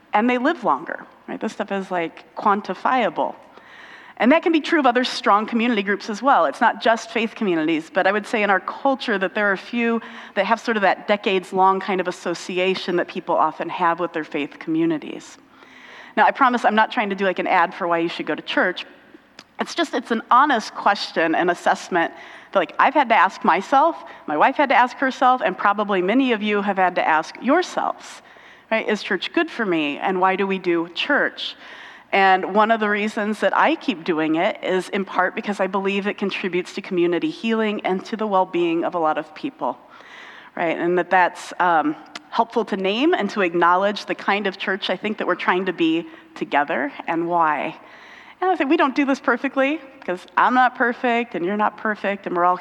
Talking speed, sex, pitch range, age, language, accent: 220 wpm, female, 185-255 Hz, 40-59, English, American